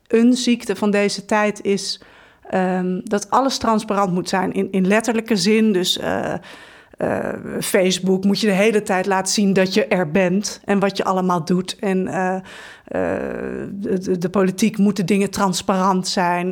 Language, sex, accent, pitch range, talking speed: Dutch, female, Dutch, 190-225 Hz, 170 wpm